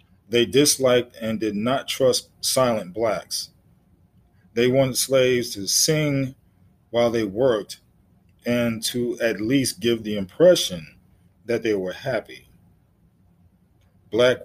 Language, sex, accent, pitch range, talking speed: English, male, American, 100-130 Hz, 115 wpm